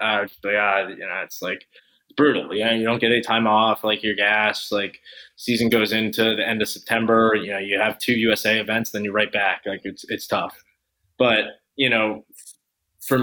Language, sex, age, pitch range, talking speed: English, male, 20-39, 100-115 Hz, 200 wpm